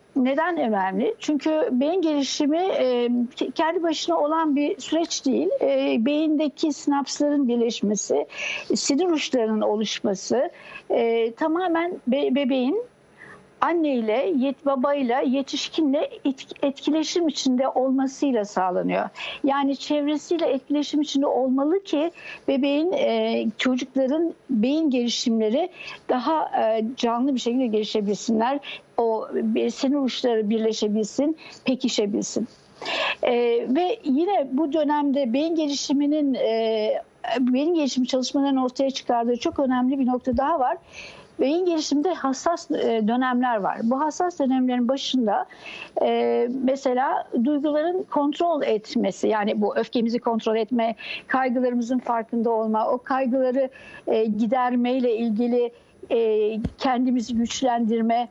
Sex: female